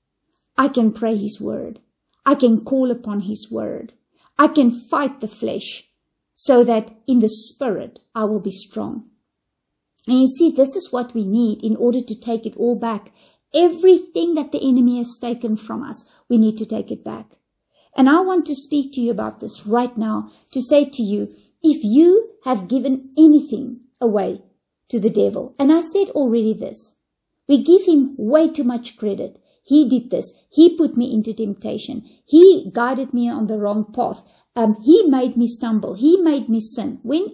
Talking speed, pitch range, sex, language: 185 wpm, 225-290 Hz, female, English